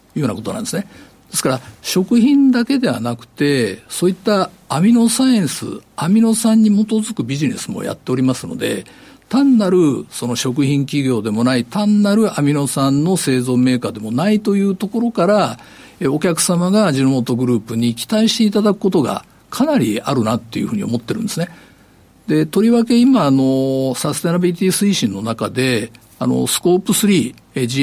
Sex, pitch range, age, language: male, 125-205 Hz, 50-69, Japanese